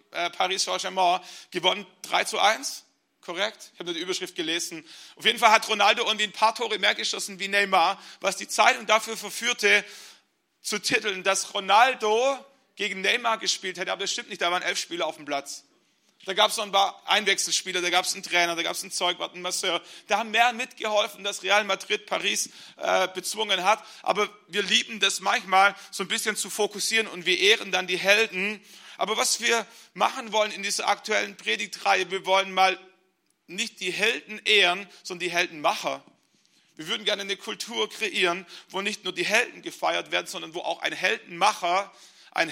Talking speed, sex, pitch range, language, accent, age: 190 wpm, male, 185-215 Hz, German, German, 40-59